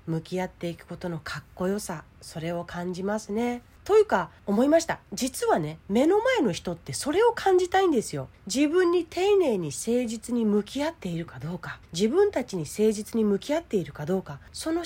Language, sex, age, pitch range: Japanese, female, 40-59, 175-270 Hz